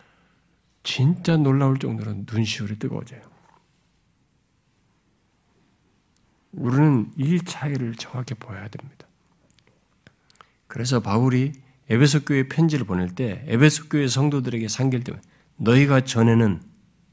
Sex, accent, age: male, native, 50-69